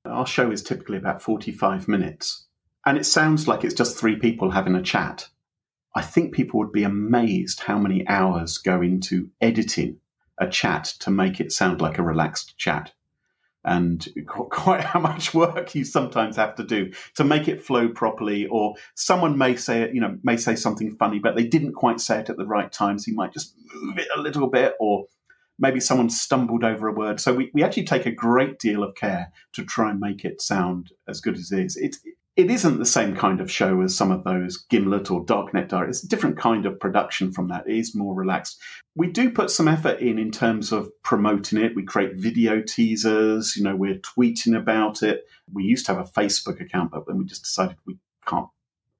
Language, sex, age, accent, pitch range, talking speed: English, male, 40-59, British, 100-135 Hz, 215 wpm